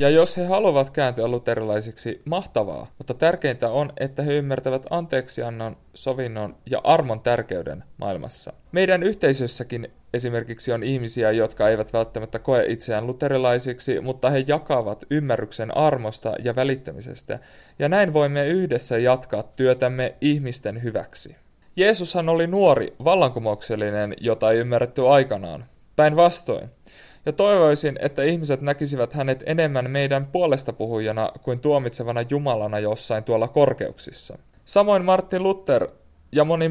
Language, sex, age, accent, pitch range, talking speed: Finnish, male, 30-49, native, 120-150 Hz, 125 wpm